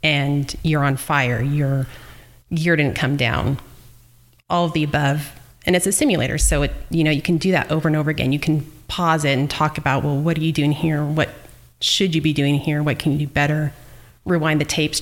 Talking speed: 225 wpm